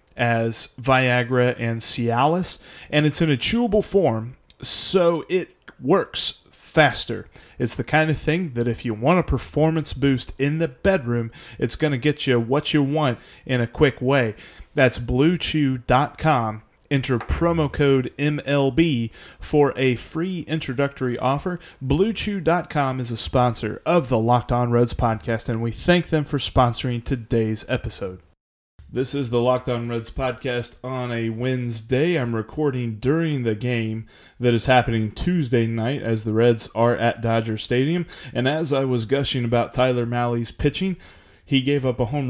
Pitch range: 115-145 Hz